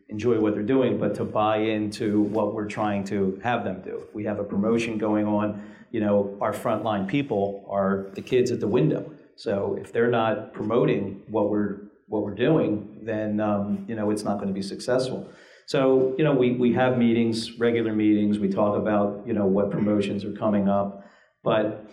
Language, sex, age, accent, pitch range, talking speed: English, male, 40-59, American, 100-120 Hz, 195 wpm